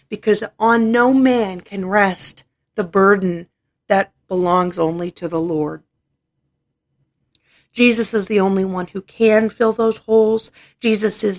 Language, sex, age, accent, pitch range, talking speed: English, female, 40-59, American, 180-220 Hz, 135 wpm